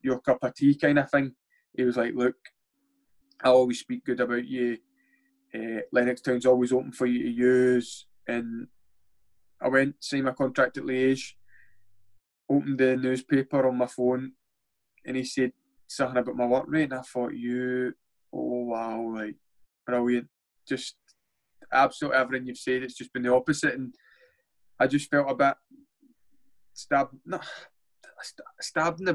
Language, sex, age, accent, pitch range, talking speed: English, male, 20-39, British, 120-135 Hz, 155 wpm